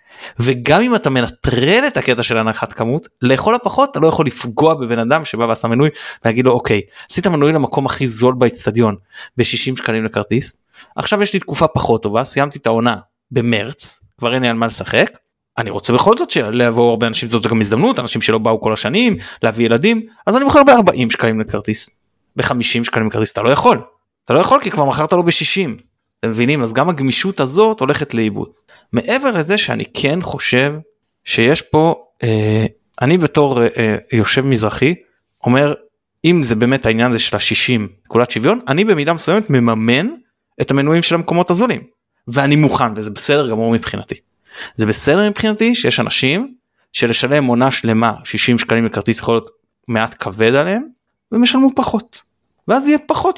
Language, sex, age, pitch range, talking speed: Hebrew, male, 20-39, 115-170 Hz, 155 wpm